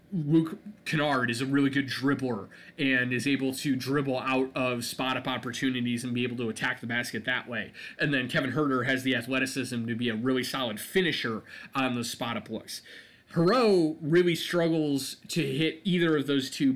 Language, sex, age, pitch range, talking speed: English, male, 20-39, 130-160 Hz, 185 wpm